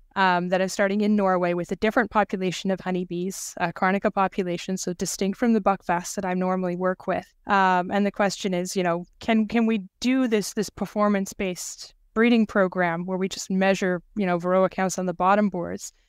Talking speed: 200 wpm